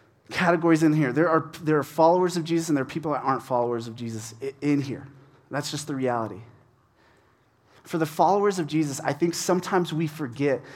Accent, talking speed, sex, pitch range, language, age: American, 195 wpm, male, 130-170 Hz, English, 30-49